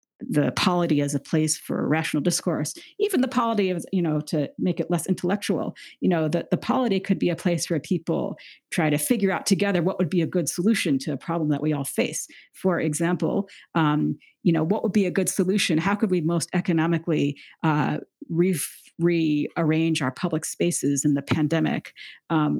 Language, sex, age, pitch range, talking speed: English, female, 40-59, 150-185 Hz, 195 wpm